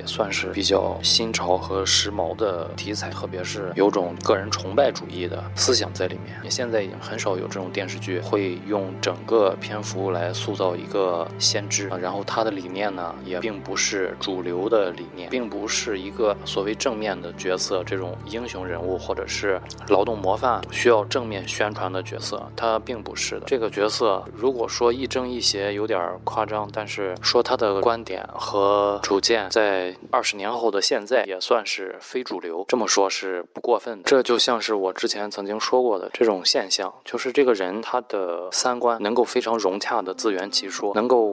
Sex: male